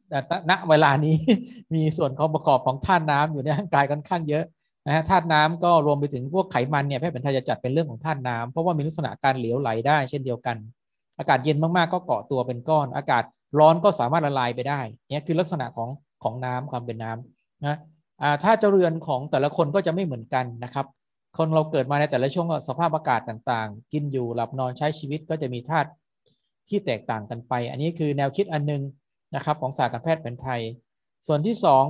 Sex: male